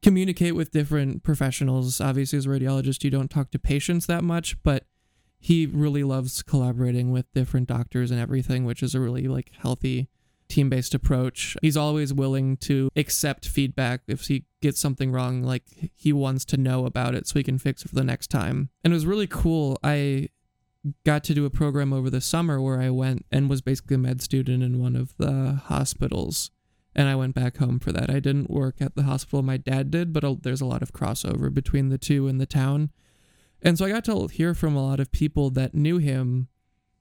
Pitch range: 130-150 Hz